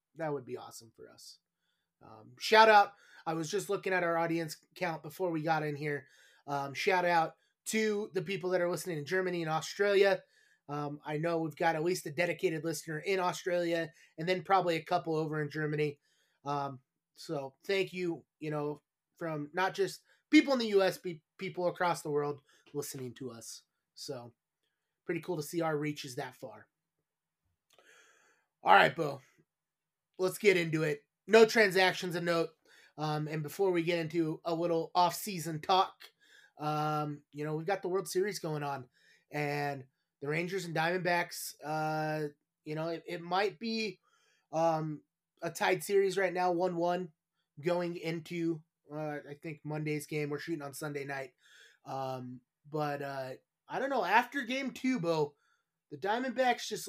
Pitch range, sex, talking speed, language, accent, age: 150-185 Hz, male, 170 wpm, English, American, 30-49